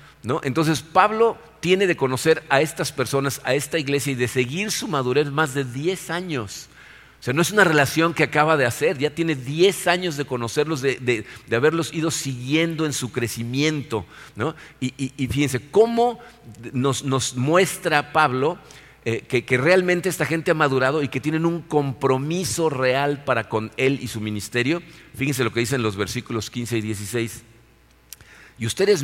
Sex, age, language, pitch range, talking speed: male, 50-69, Spanish, 125-165 Hz, 180 wpm